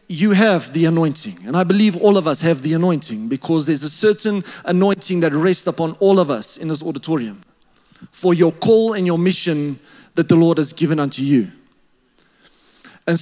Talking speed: 185 wpm